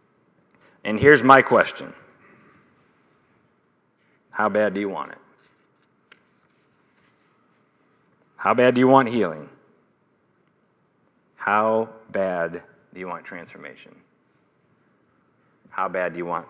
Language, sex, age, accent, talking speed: English, male, 40-59, American, 100 wpm